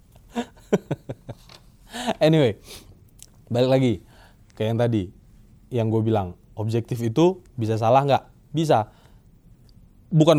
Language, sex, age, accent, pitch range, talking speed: Indonesian, male, 20-39, native, 110-140 Hz, 90 wpm